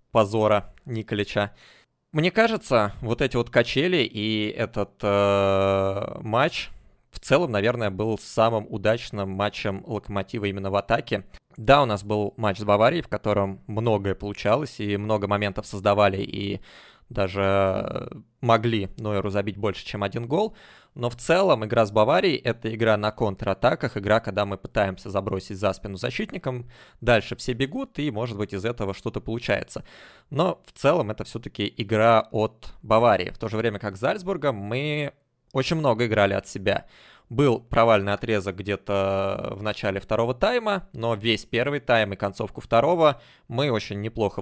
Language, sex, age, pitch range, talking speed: Russian, male, 20-39, 100-120 Hz, 155 wpm